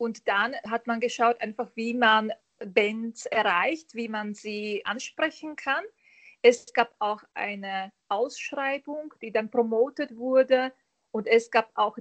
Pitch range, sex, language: 205-245 Hz, female, German